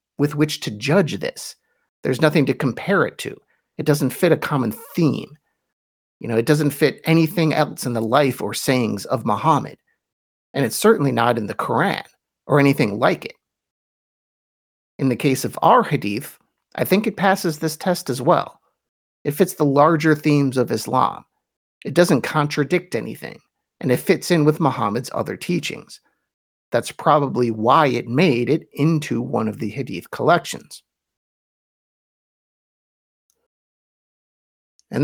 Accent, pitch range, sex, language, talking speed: American, 125-165 Hz, male, English, 150 wpm